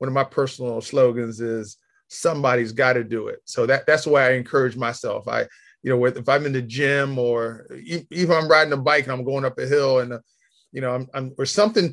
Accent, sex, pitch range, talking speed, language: American, male, 120-150 Hz, 240 wpm, English